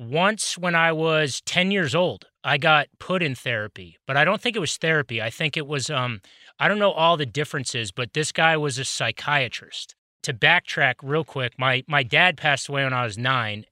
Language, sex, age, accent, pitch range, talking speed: English, male, 30-49, American, 125-155 Hz, 215 wpm